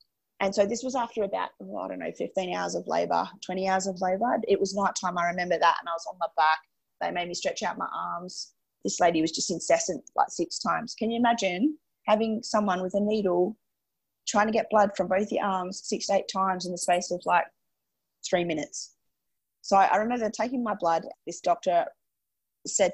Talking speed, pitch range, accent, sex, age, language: 210 wpm, 170-205 Hz, Australian, female, 20-39, English